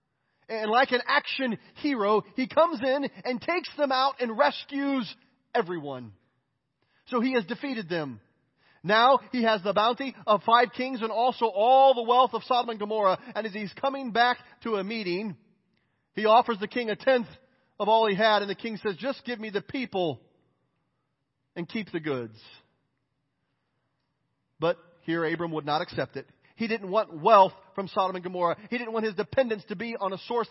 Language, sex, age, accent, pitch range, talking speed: English, male, 40-59, American, 170-230 Hz, 185 wpm